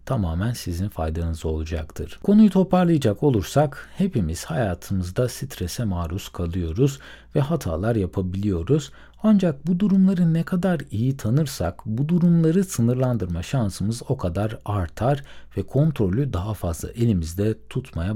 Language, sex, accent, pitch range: Turkish, male, native, 95-140 Hz